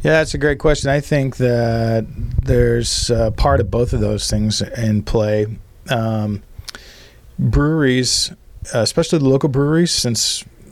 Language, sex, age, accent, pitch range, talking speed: English, male, 40-59, American, 105-120 Hz, 140 wpm